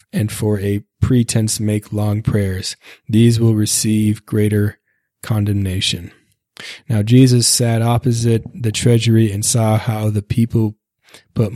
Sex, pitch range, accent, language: male, 105-115 Hz, American, English